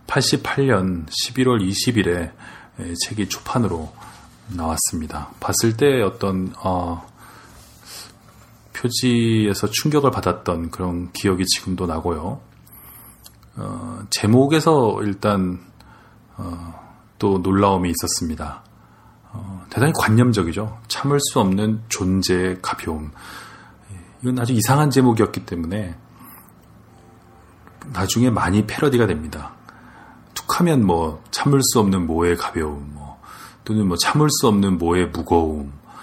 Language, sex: Korean, male